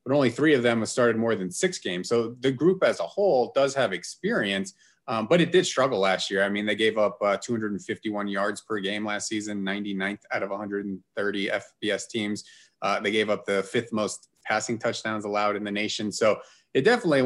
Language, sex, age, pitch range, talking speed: English, male, 30-49, 105-125 Hz, 210 wpm